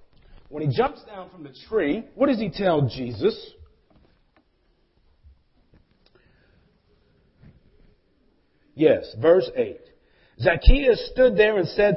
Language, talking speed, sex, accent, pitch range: English, 100 wpm, male, American, 140-215 Hz